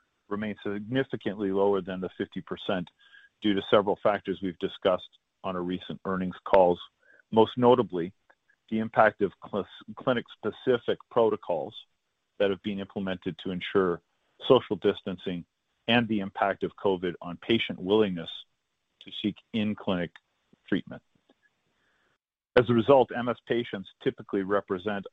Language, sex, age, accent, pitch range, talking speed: English, male, 40-59, American, 95-110 Hz, 130 wpm